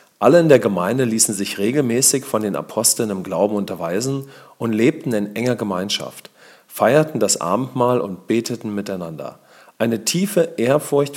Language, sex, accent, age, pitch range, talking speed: English, male, German, 40-59, 100-120 Hz, 145 wpm